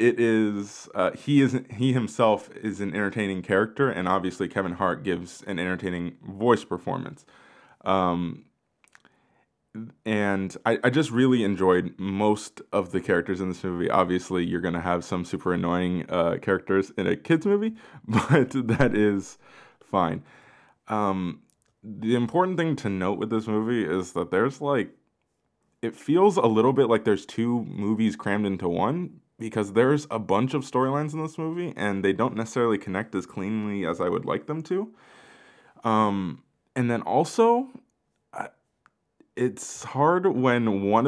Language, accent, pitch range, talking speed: English, American, 95-130 Hz, 155 wpm